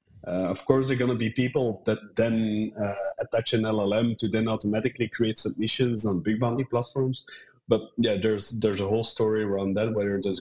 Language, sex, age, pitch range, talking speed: English, male, 30-49, 100-120 Hz, 200 wpm